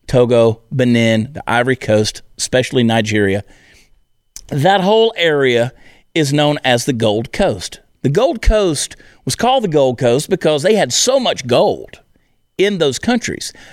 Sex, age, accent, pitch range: male, 50-69, American, 125-190 Hz